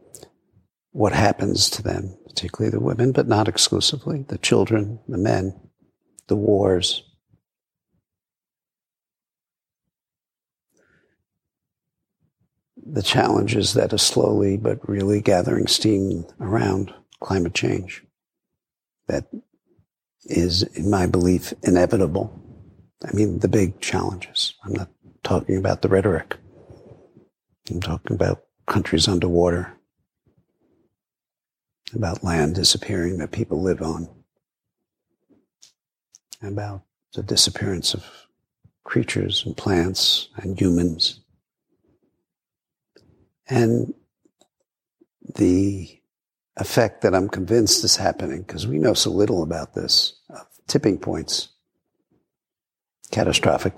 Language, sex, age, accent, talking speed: English, male, 60-79, American, 95 wpm